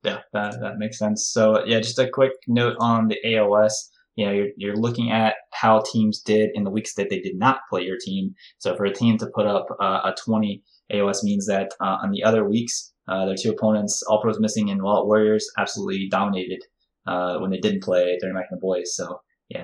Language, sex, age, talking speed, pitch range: English, male, 20-39, 230 wpm, 95-115 Hz